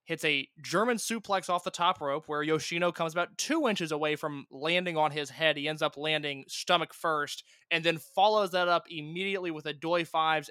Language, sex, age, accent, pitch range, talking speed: English, male, 20-39, American, 155-190 Hz, 205 wpm